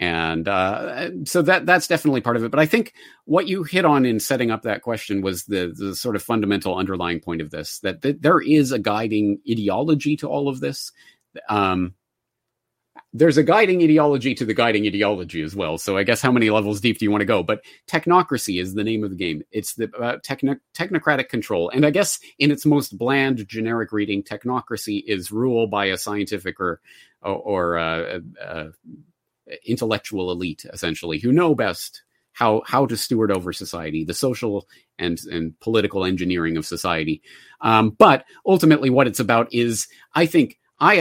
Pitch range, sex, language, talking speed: 95-125 Hz, male, English, 190 wpm